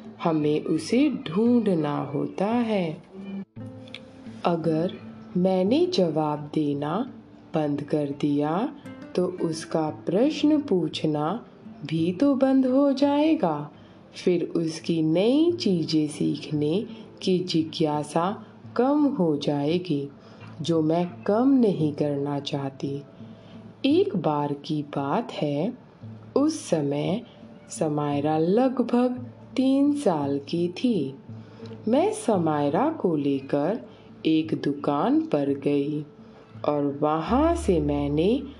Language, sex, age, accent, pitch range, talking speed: Hindi, female, 20-39, native, 145-225 Hz, 95 wpm